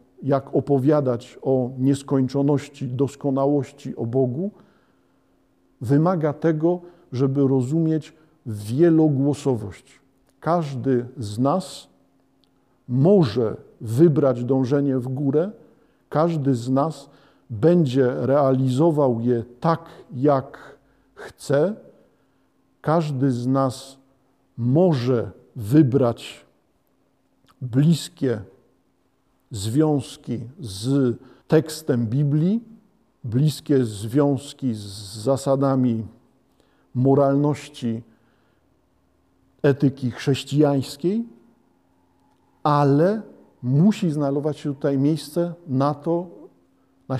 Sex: male